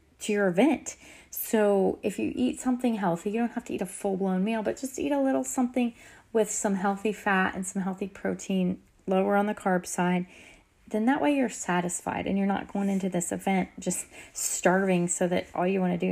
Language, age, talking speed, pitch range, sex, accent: English, 30-49, 210 wpm, 180-240 Hz, female, American